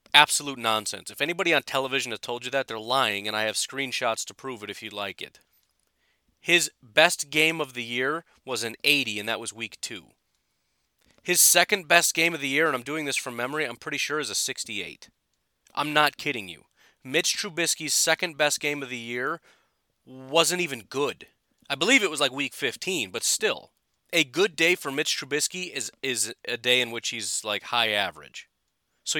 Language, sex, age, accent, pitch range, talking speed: English, male, 30-49, American, 115-150 Hz, 200 wpm